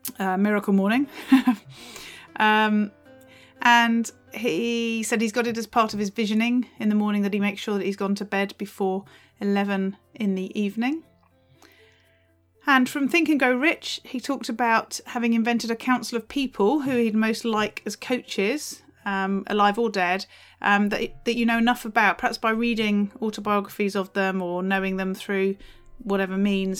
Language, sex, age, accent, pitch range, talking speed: English, female, 30-49, British, 190-230 Hz, 170 wpm